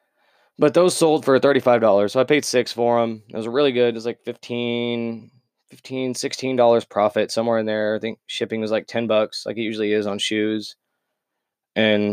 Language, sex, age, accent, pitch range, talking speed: English, male, 20-39, American, 110-140 Hz, 195 wpm